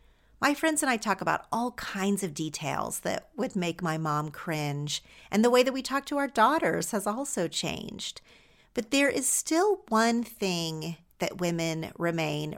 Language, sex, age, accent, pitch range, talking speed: English, female, 40-59, American, 170-250 Hz, 175 wpm